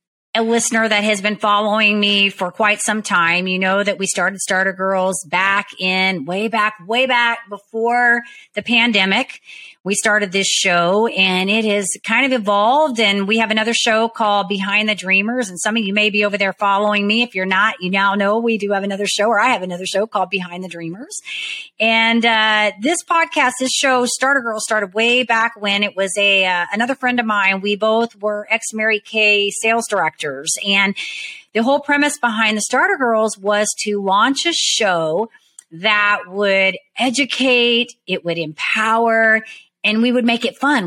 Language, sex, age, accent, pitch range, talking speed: English, female, 30-49, American, 195-235 Hz, 190 wpm